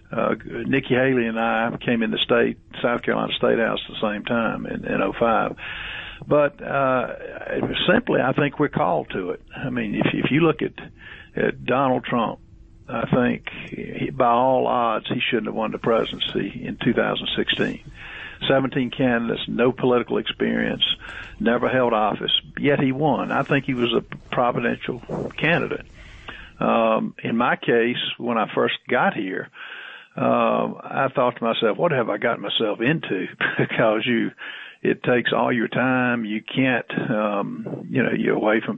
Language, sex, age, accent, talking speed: English, male, 50-69, American, 160 wpm